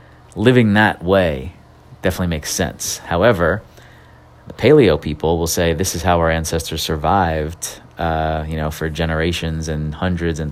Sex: male